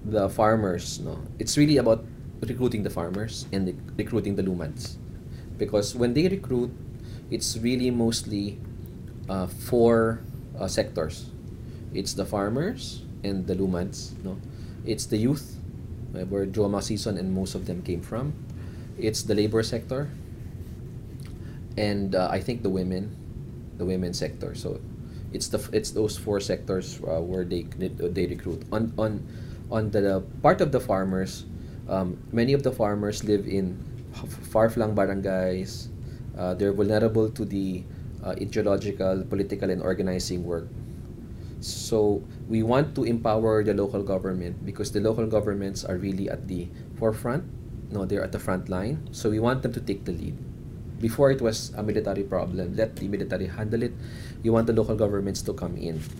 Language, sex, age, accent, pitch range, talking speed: English, male, 20-39, Filipino, 95-115 Hz, 160 wpm